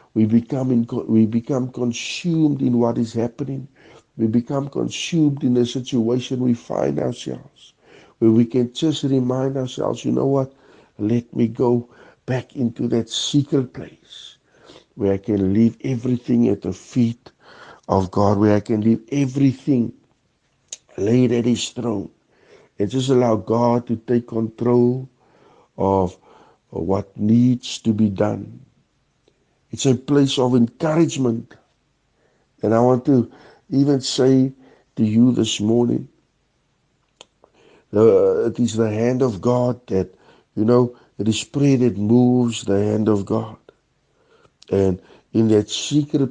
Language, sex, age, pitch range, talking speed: Dutch, male, 60-79, 110-130 Hz, 135 wpm